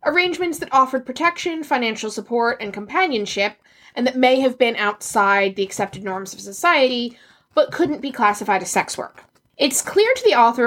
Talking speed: 175 wpm